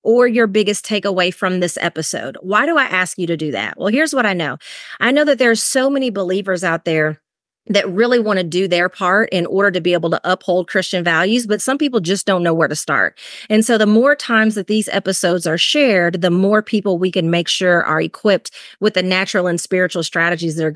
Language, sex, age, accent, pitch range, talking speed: English, female, 30-49, American, 175-225 Hz, 230 wpm